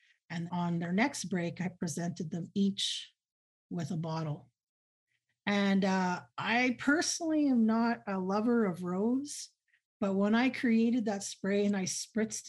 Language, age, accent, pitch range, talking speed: English, 40-59, American, 170-205 Hz, 150 wpm